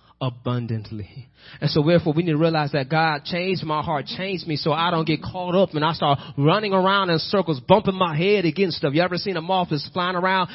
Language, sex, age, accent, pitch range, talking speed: English, male, 30-49, American, 110-175 Hz, 235 wpm